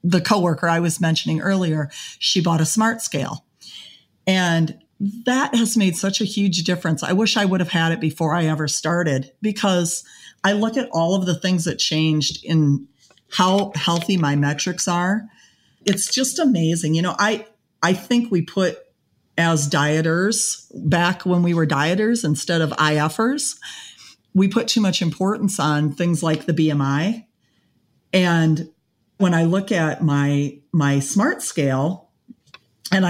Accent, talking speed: American, 155 wpm